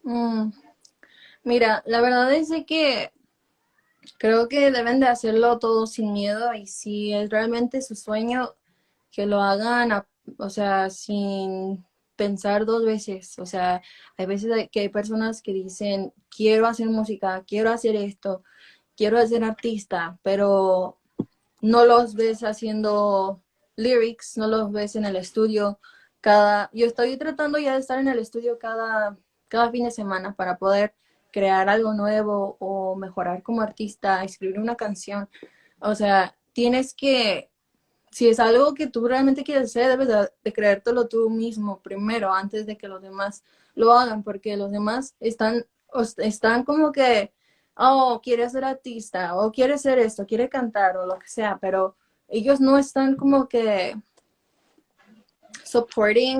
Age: 20-39